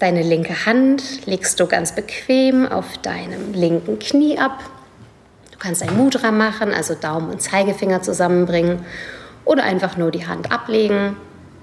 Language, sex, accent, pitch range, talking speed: German, female, German, 165-220 Hz, 145 wpm